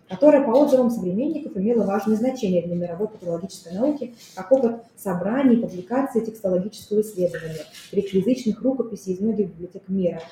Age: 20-39